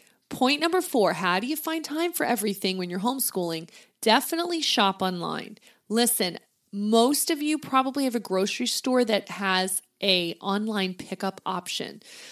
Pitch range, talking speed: 190-260 Hz, 150 wpm